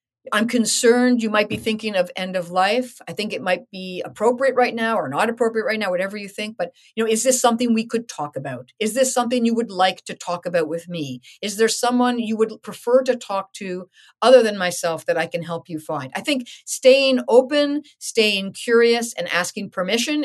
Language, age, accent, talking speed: English, 50-69, American, 220 wpm